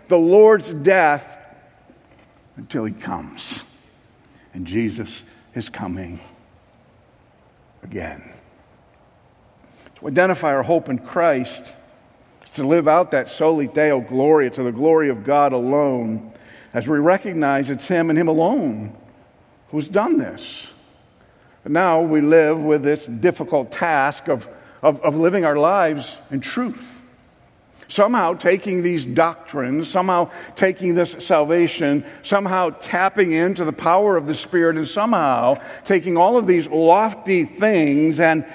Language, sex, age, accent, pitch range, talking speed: English, male, 50-69, American, 145-190 Hz, 130 wpm